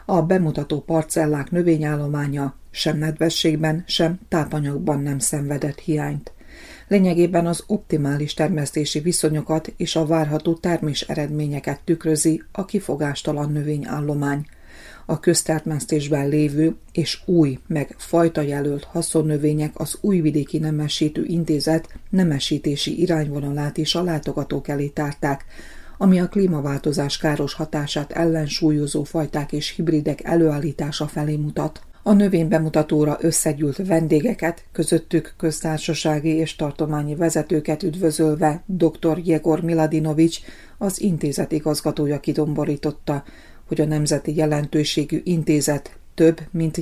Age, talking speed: 30-49, 105 wpm